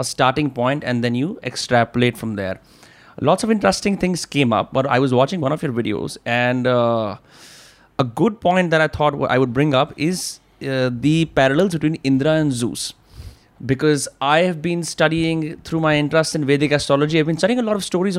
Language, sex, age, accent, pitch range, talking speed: Hindi, male, 30-49, native, 125-160 Hz, 200 wpm